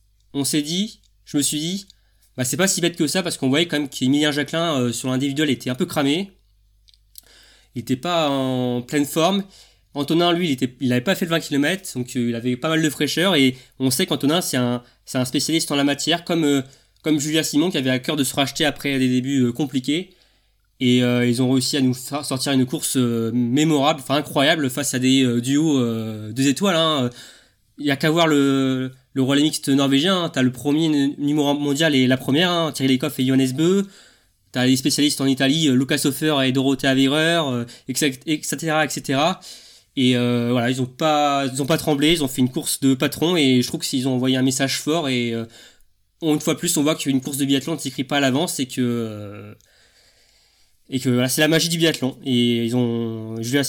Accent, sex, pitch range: French, male, 125-150 Hz